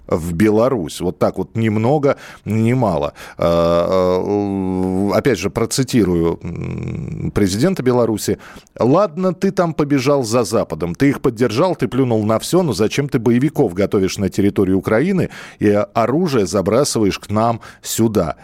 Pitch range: 100-140 Hz